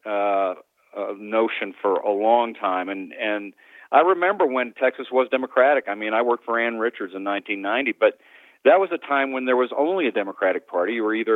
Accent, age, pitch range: American, 40-59, 110-155 Hz